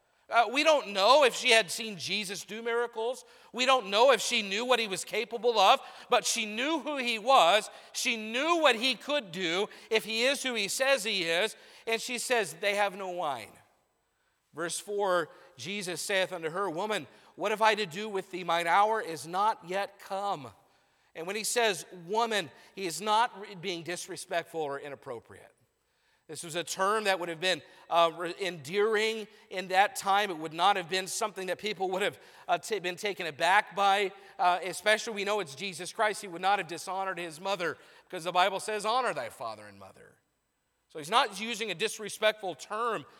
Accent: American